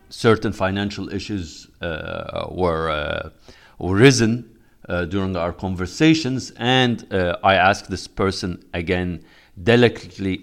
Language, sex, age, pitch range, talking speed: English, male, 50-69, 90-110 Hz, 110 wpm